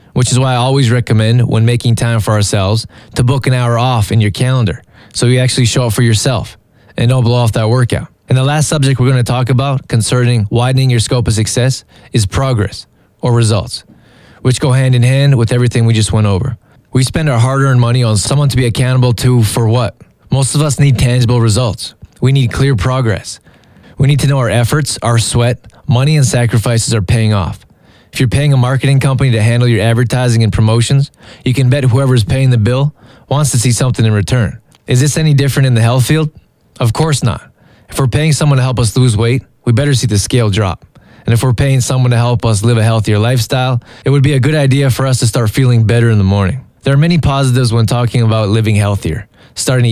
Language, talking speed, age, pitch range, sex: English, 225 wpm, 20-39, 115-135 Hz, male